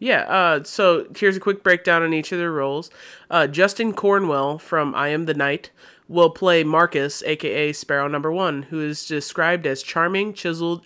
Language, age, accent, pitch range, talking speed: English, 20-39, American, 145-170 Hz, 180 wpm